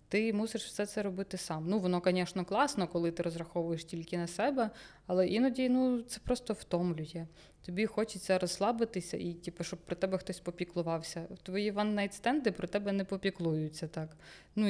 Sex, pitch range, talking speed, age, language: female, 175-220 Hz, 165 wpm, 20-39, Ukrainian